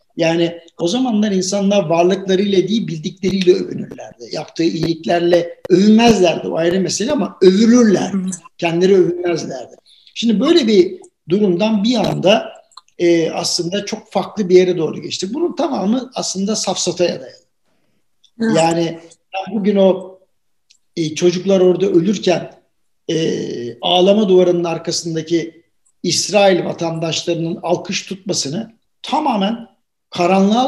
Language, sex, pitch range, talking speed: Turkish, male, 175-210 Hz, 105 wpm